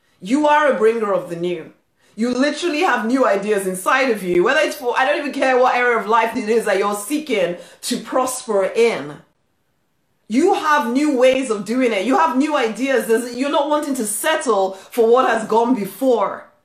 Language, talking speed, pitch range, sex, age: English, 200 wpm, 195-270 Hz, female, 30-49